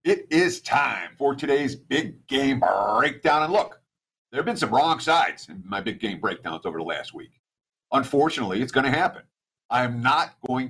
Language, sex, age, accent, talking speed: English, male, 50-69, American, 185 wpm